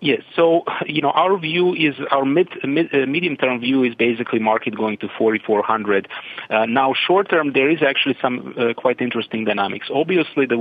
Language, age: English, 40-59